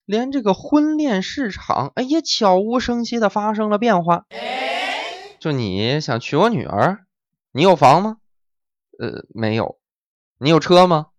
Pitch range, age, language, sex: 160-255 Hz, 20-39, Chinese, male